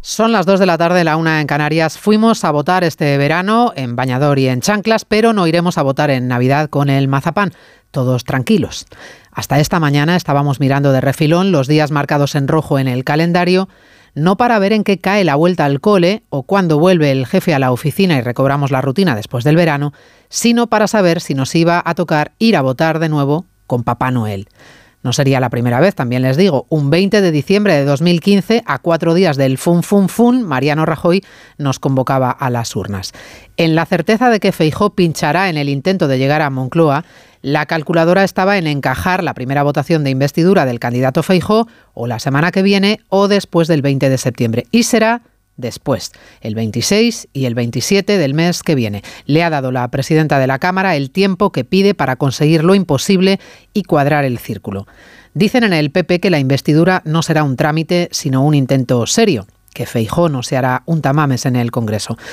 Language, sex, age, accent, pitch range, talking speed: Spanish, female, 40-59, Spanish, 135-185 Hz, 205 wpm